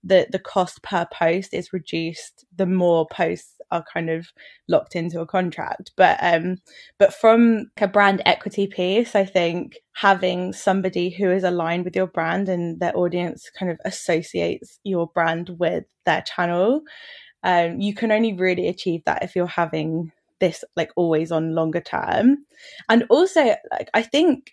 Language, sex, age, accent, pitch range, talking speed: English, female, 10-29, British, 175-210 Hz, 160 wpm